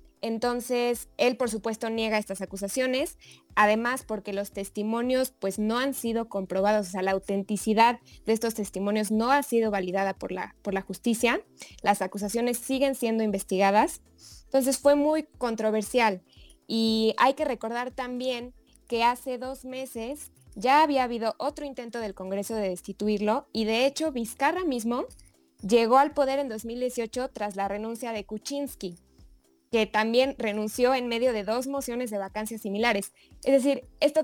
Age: 20-39